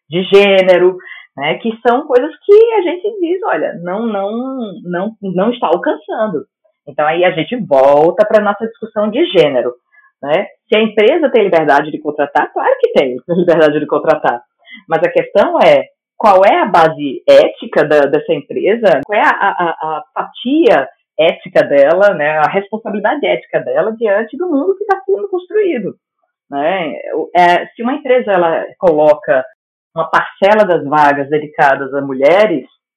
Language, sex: Portuguese, female